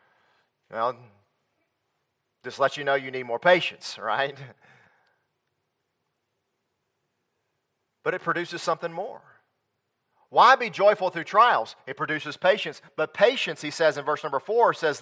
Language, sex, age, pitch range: English, male, 40-59, 150-210 Hz